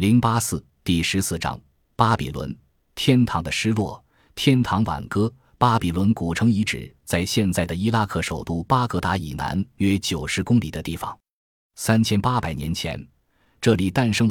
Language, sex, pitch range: Chinese, male, 85-115 Hz